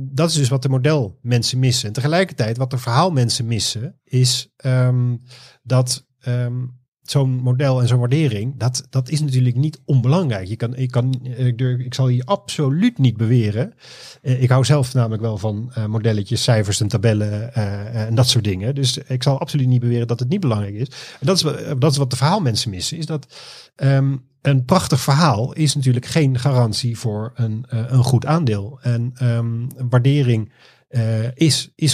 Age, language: 40-59, Dutch